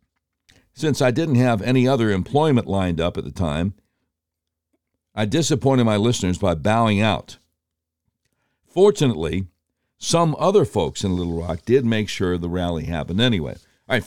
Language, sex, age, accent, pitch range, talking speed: English, male, 60-79, American, 85-125 Hz, 150 wpm